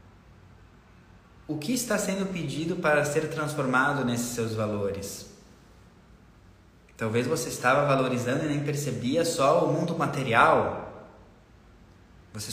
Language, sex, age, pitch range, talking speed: Portuguese, male, 20-39, 110-145 Hz, 110 wpm